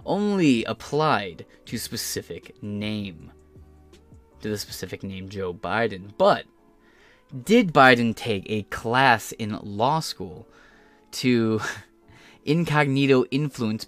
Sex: male